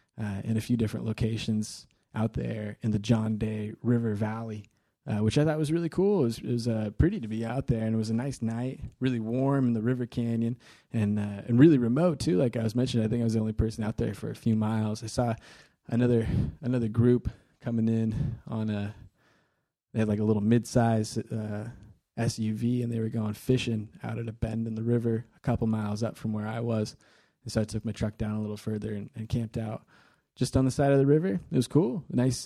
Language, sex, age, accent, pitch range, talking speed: English, male, 20-39, American, 110-125 Hz, 235 wpm